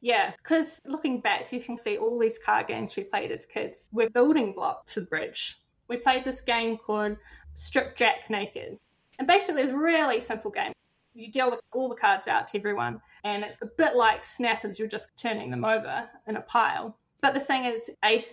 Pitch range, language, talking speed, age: 215-265 Hz, English, 215 wpm, 20-39